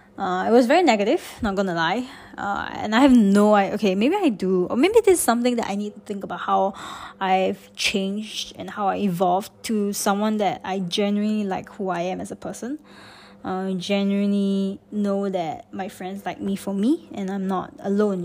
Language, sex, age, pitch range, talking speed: English, female, 20-39, 185-235 Hz, 200 wpm